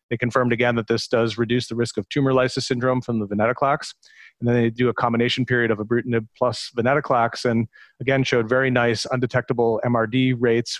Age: 30-49